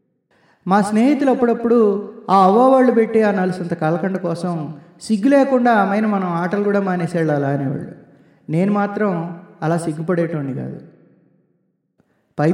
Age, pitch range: 20-39, 160-205 Hz